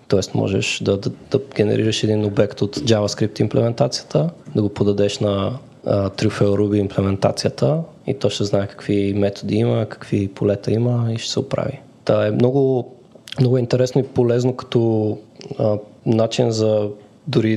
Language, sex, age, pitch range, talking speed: Bulgarian, male, 20-39, 105-130 Hz, 150 wpm